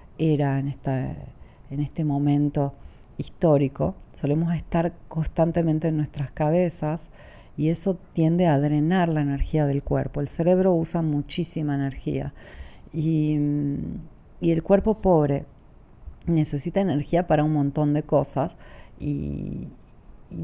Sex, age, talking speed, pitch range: female, 40-59, 115 wpm, 140-165 Hz